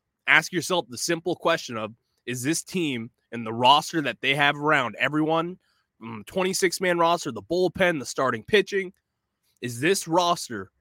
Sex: male